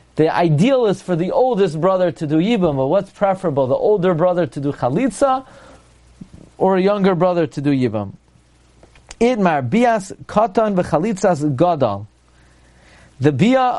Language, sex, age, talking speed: English, male, 40-59, 150 wpm